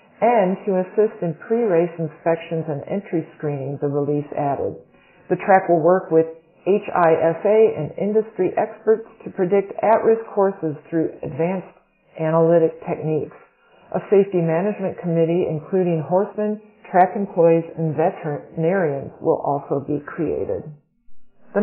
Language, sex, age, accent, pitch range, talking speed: English, female, 40-59, American, 165-215 Hz, 120 wpm